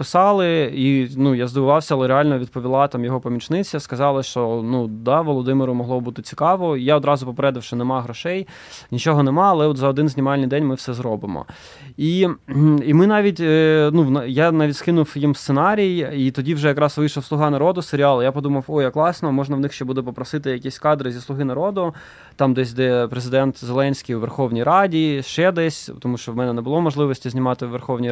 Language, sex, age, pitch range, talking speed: Ukrainian, male, 20-39, 130-155 Hz, 190 wpm